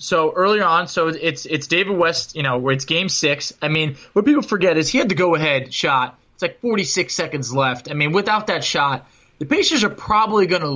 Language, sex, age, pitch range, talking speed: English, male, 20-39, 135-190 Hz, 225 wpm